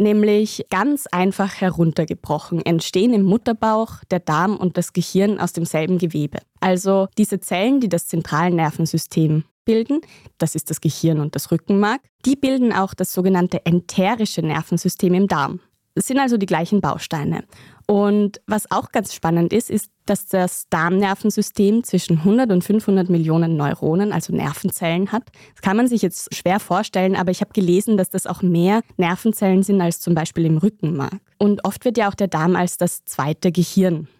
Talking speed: 170 wpm